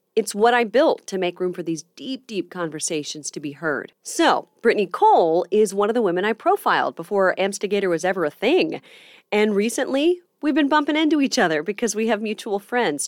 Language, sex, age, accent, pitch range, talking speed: English, female, 30-49, American, 165-270 Hz, 200 wpm